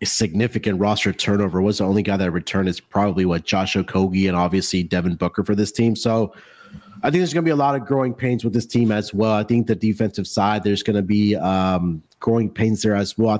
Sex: male